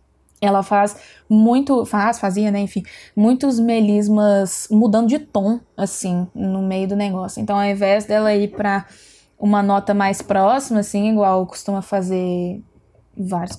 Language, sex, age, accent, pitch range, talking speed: Portuguese, female, 20-39, Brazilian, 195-245 Hz, 140 wpm